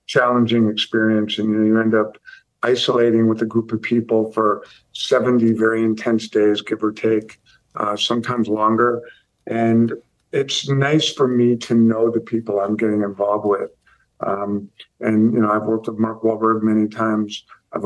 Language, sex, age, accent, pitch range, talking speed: English, male, 50-69, American, 110-120 Hz, 160 wpm